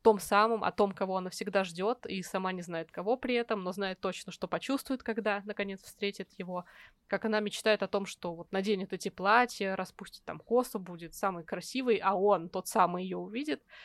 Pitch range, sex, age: 180-215 Hz, female, 20-39